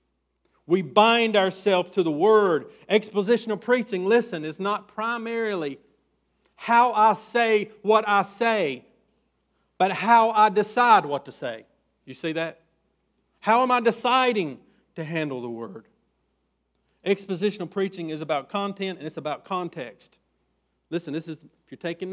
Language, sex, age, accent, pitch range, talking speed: English, male, 50-69, American, 165-255 Hz, 140 wpm